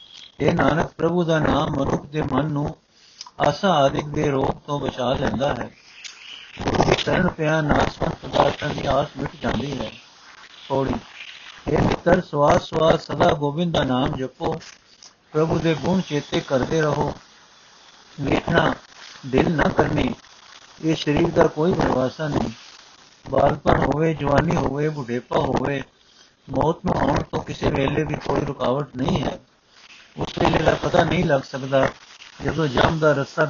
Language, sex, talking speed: Punjabi, male, 140 wpm